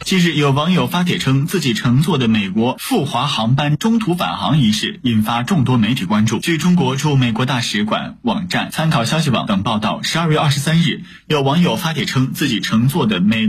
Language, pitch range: Chinese, 130-185 Hz